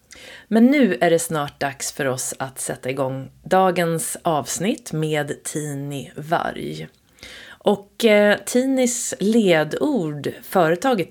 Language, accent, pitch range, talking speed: Swedish, native, 145-205 Hz, 115 wpm